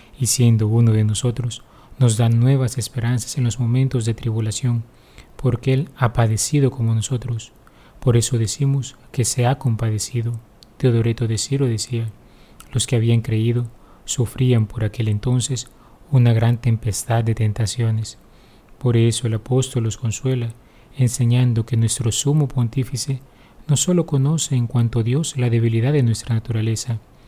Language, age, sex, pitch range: Spanish, 30-49, male, 115-130 Hz